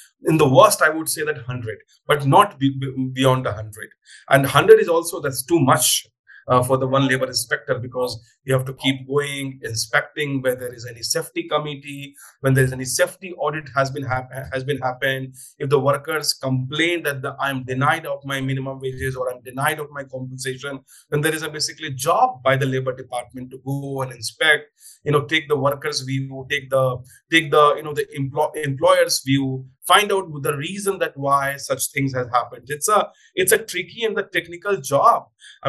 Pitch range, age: 130-160 Hz, 30-49